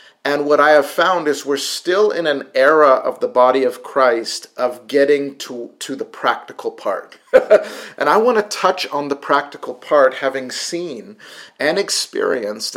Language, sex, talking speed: English, male, 170 wpm